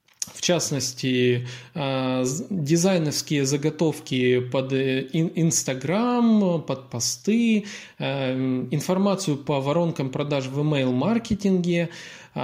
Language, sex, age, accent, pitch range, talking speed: Russian, male, 20-39, native, 130-180 Hz, 70 wpm